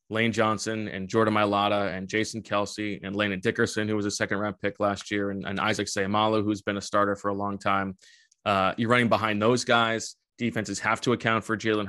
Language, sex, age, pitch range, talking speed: English, male, 20-39, 100-115 Hz, 215 wpm